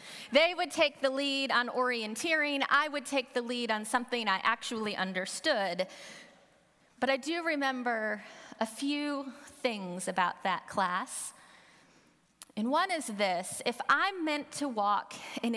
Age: 30-49